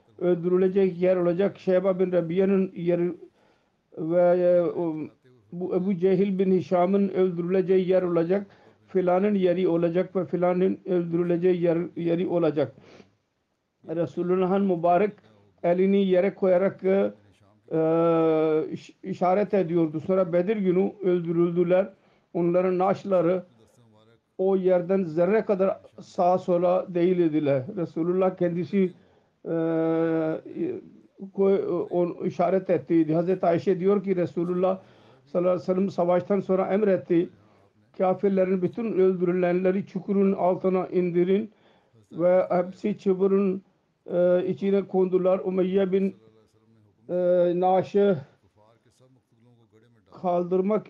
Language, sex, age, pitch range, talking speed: Turkish, male, 50-69, 170-190 Hz, 95 wpm